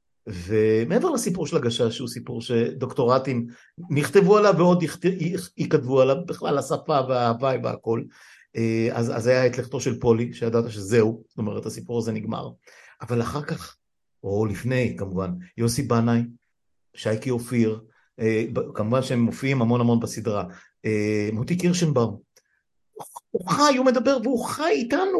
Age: 50-69